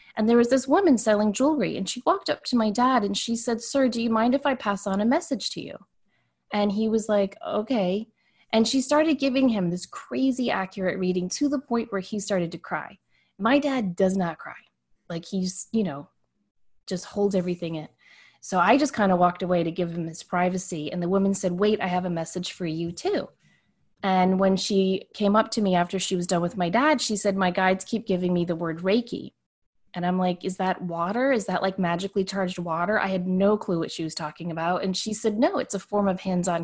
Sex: female